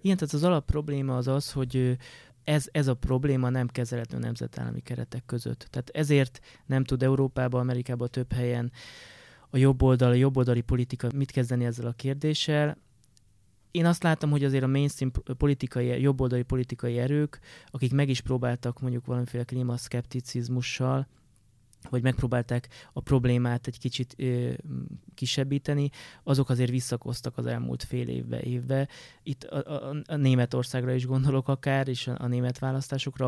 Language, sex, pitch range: Hungarian, male, 125-135 Hz